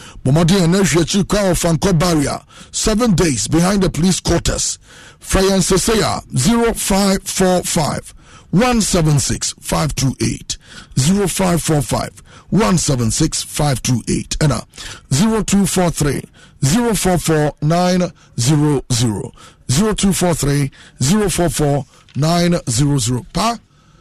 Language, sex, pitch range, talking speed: English, male, 145-185 Hz, 40 wpm